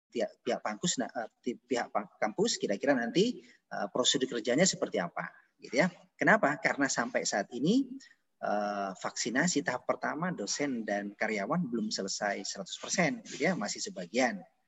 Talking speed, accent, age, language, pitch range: 130 wpm, native, 30-49, Indonesian, 125-170 Hz